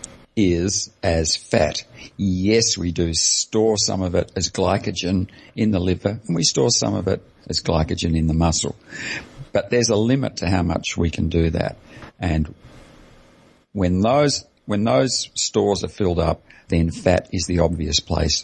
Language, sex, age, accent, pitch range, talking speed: English, male, 50-69, Australian, 85-110 Hz, 170 wpm